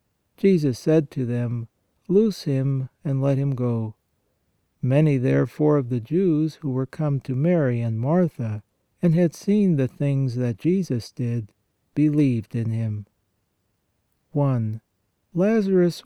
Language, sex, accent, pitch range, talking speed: English, male, American, 120-150 Hz, 130 wpm